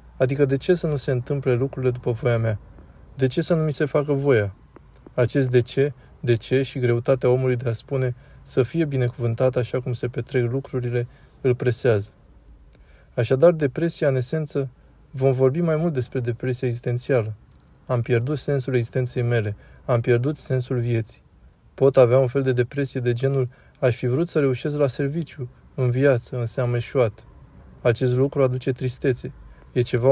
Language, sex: Romanian, male